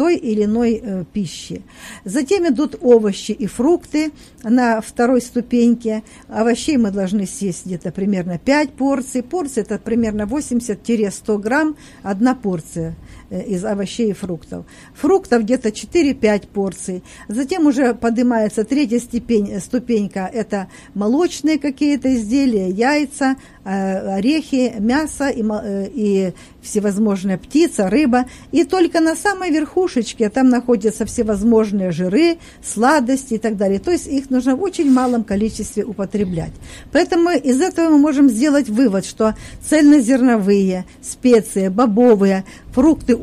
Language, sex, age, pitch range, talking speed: Russian, female, 50-69, 210-275 Hz, 125 wpm